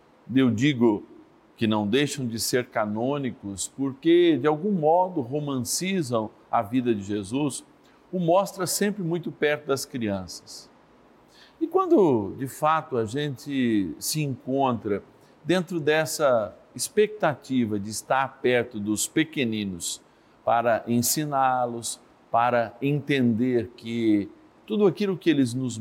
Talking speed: 115 wpm